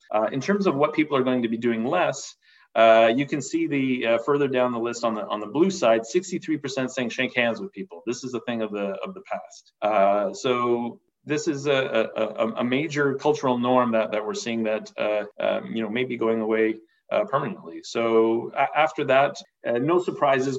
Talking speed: 220 wpm